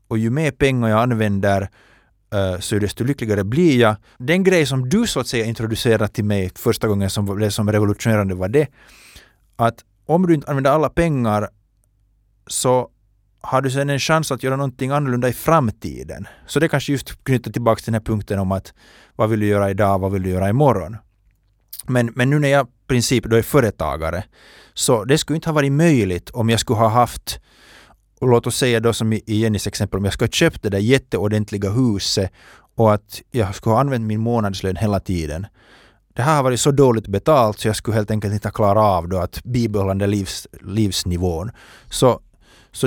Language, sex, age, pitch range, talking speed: Finnish, male, 30-49, 100-125 Hz, 200 wpm